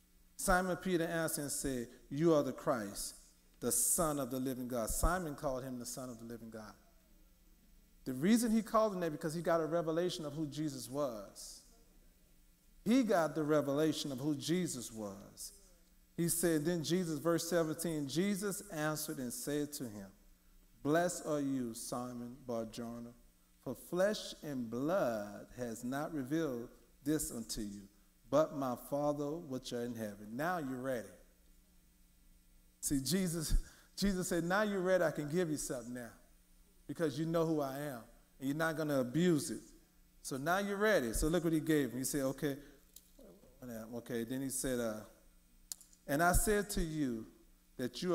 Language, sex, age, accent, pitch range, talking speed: English, male, 40-59, American, 115-160 Hz, 170 wpm